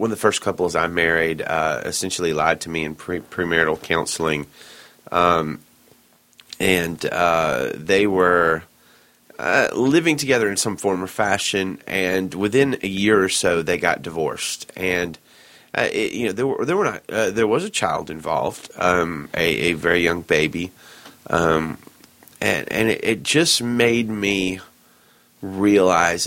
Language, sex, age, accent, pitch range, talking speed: English, male, 30-49, American, 80-100 Hz, 160 wpm